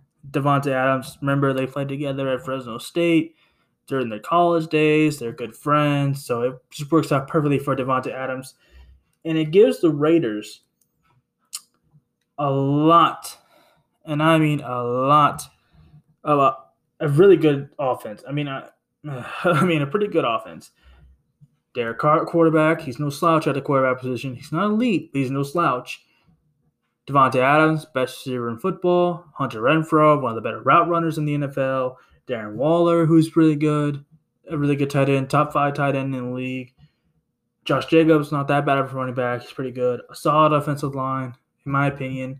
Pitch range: 130-160 Hz